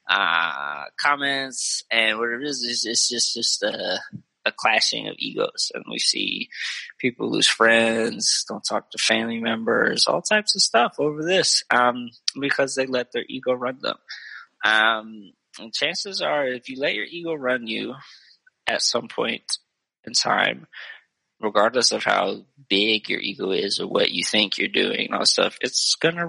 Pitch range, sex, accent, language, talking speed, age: 115-155 Hz, male, American, English, 165 wpm, 20-39